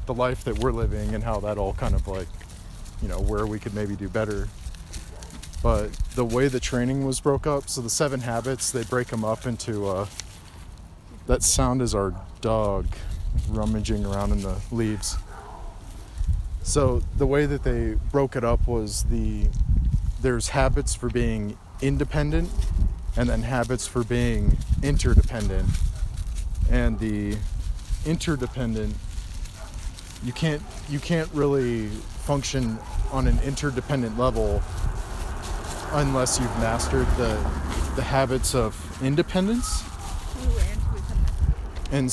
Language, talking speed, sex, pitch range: English, 130 wpm, male, 90-125 Hz